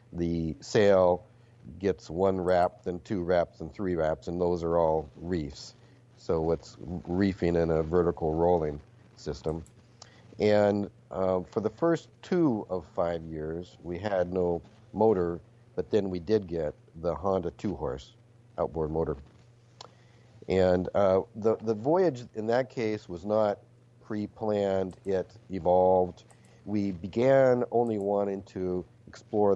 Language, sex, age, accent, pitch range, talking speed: English, male, 50-69, American, 90-120 Hz, 135 wpm